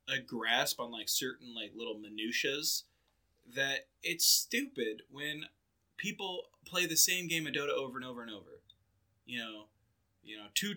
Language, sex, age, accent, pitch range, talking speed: English, male, 20-39, American, 110-155 Hz, 160 wpm